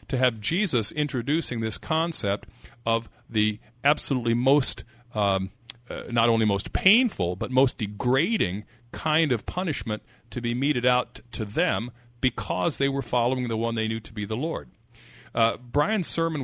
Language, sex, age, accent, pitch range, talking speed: English, male, 50-69, American, 110-130 Hz, 155 wpm